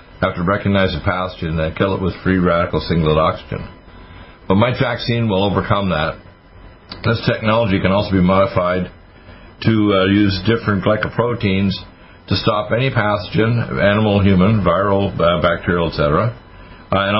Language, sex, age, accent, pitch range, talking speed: English, male, 60-79, American, 85-100 Hz, 145 wpm